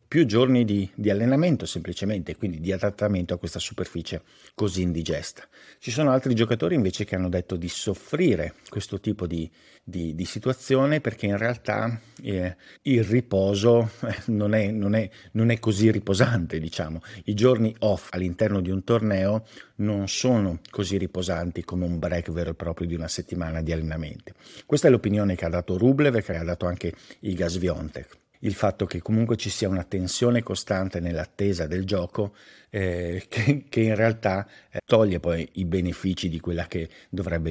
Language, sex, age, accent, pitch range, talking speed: Italian, male, 50-69, native, 85-110 Hz, 170 wpm